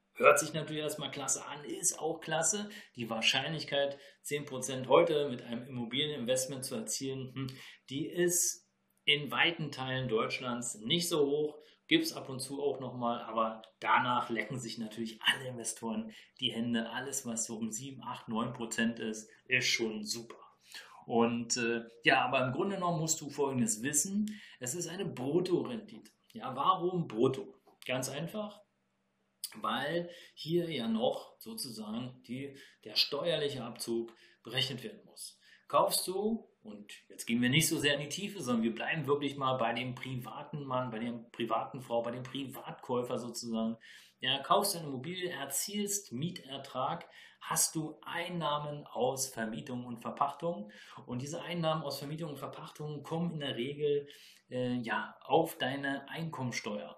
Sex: male